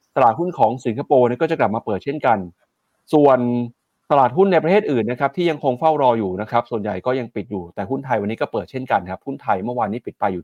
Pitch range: 110-145 Hz